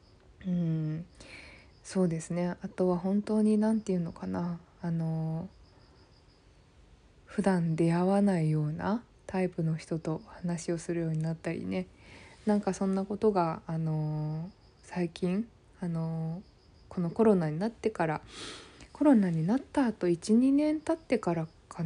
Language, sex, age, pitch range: Japanese, female, 20-39, 165-205 Hz